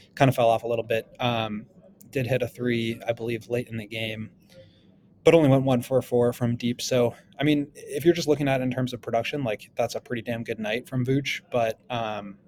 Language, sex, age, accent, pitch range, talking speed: English, male, 20-39, American, 115-130 Hz, 240 wpm